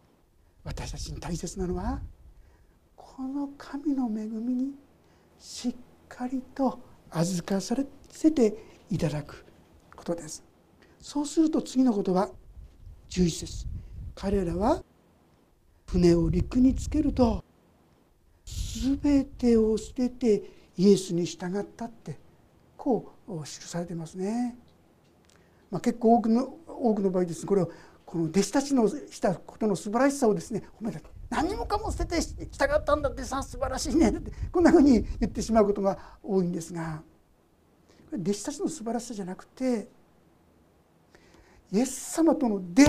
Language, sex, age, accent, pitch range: Japanese, male, 60-79, native, 175-280 Hz